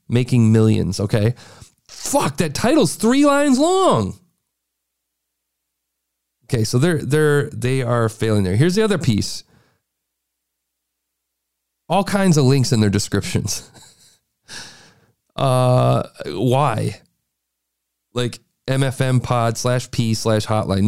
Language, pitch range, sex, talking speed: English, 100-160 Hz, male, 105 wpm